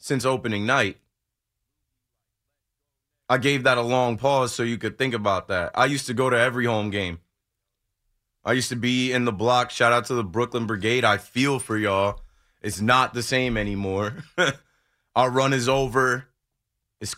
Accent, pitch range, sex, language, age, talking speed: American, 110-130 Hz, male, English, 20-39, 175 wpm